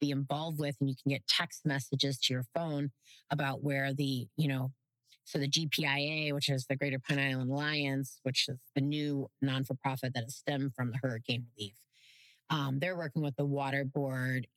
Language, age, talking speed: English, 30-49, 190 wpm